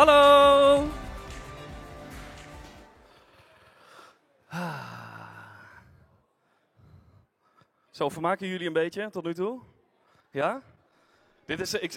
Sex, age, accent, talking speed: male, 20-39, Dutch, 55 wpm